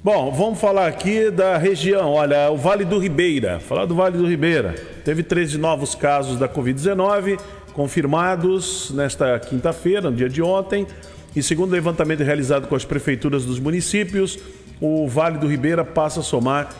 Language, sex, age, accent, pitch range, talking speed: Portuguese, male, 40-59, Brazilian, 135-170 Hz, 160 wpm